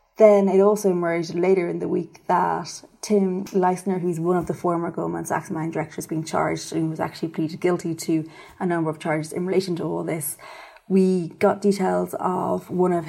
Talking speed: 195 wpm